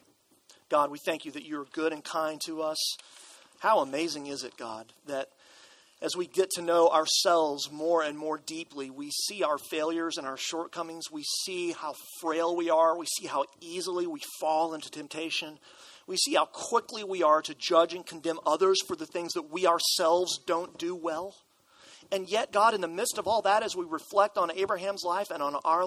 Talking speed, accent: 200 wpm, American